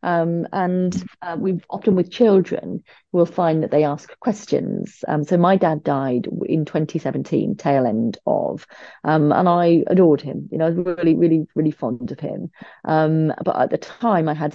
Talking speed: 185 wpm